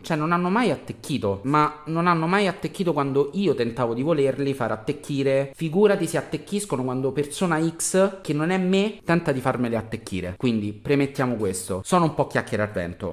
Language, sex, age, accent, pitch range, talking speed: Italian, male, 30-49, native, 120-175 Hz, 185 wpm